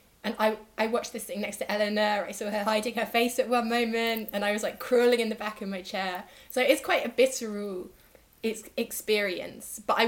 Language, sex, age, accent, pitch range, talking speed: English, female, 20-39, British, 190-240 Hz, 225 wpm